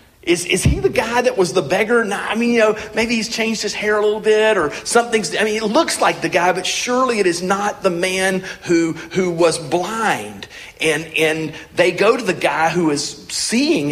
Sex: male